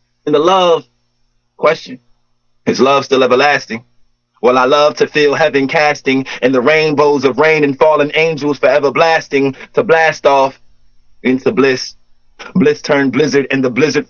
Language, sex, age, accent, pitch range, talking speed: English, male, 30-49, American, 125-165 Hz, 155 wpm